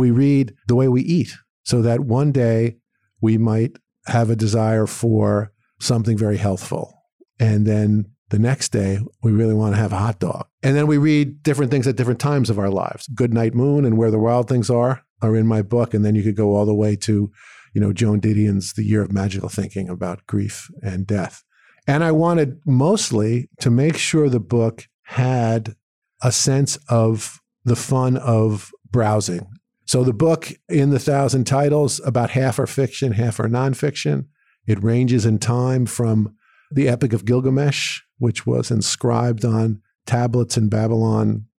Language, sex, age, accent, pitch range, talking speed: English, male, 50-69, American, 110-130 Hz, 180 wpm